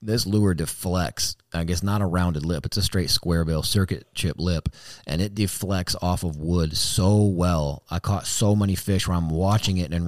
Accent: American